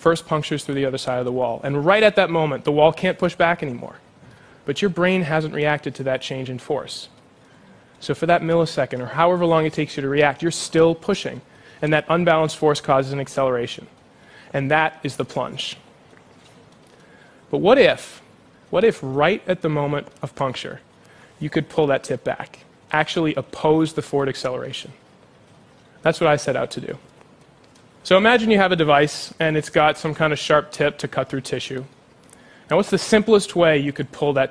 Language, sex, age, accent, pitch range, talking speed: English, male, 20-39, American, 140-165 Hz, 195 wpm